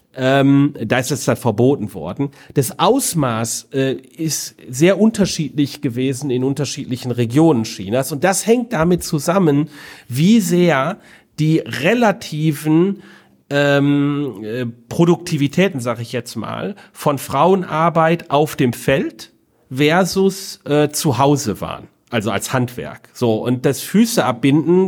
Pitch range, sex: 125-165 Hz, male